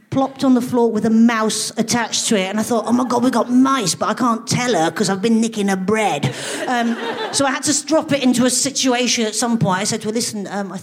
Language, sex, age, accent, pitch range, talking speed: English, female, 40-59, British, 210-265 Hz, 270 wpm